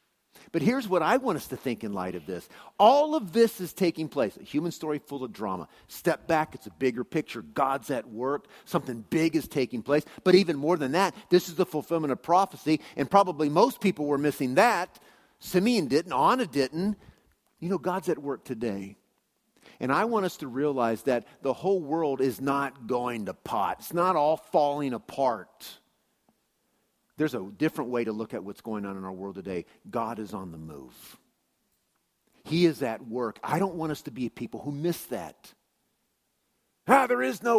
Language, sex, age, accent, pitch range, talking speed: English, male, 50-69, American, 125-180 Hz, 200 wpm